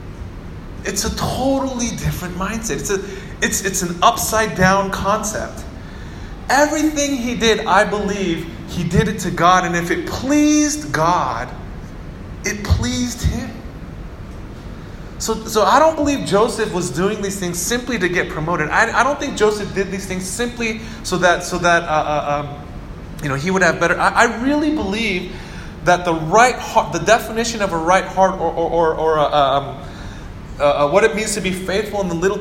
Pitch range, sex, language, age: 155-200 Hz, male, English, 30-49